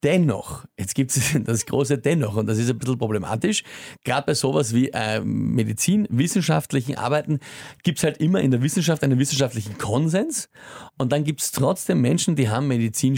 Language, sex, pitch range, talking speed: German, male, 115-150 Hz, 180 wpm